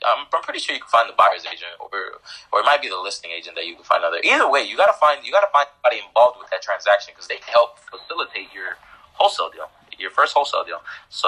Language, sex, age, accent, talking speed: English, male, 20-39, American, 275 wpm